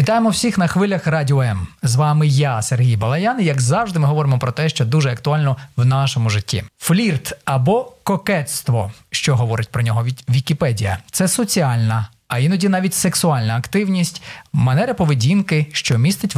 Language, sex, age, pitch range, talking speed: Ukrainian, male, 30-49, 125-170 Hz, 160 wpm